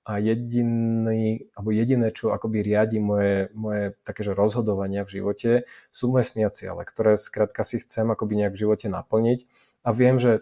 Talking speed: 140 wpm